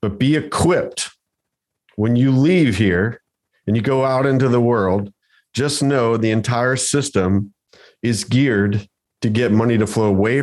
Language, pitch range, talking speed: English, 100-120 Hz, 155 wpm